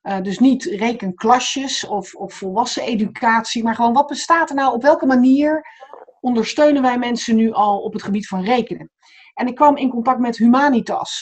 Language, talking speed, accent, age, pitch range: Dutch, 180 wpm, Dutch, 40-59, 200-250 Hz